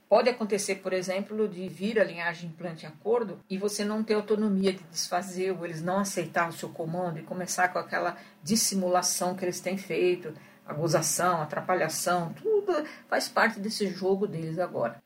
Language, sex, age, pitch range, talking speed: Portuguese, female, 60-79, 170-200 Hz, 165 wpm